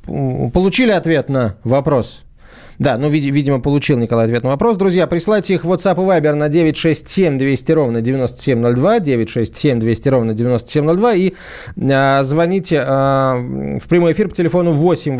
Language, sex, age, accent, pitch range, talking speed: Russian, male, 20-39, native, 130-170 Hz, 150 wpm